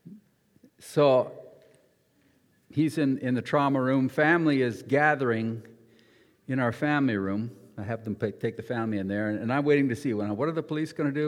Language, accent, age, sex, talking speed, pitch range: English, American, 50-69, male, 200 wpm, 110-155 Hz